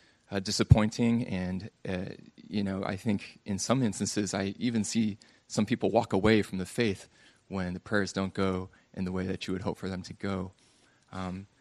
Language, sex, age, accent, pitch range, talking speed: English, male, 20-39, American, 95-110 Hz, 195 wpm